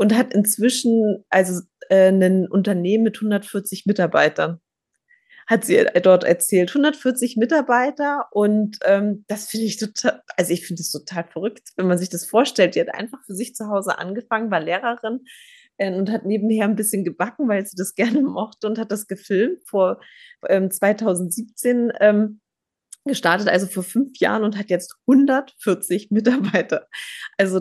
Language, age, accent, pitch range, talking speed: German, 20-39, German, 180-220 Hz, 160 wpm